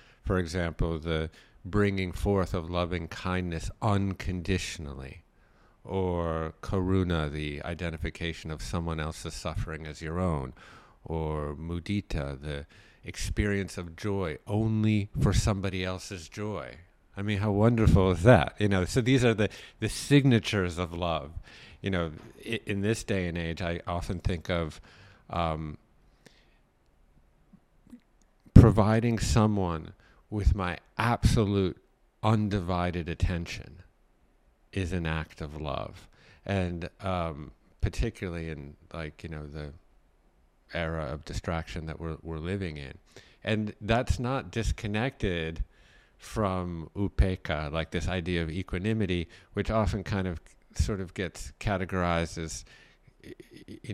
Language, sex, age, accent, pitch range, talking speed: English, male, 50-69, American, 80-105 Hz, 120 wpm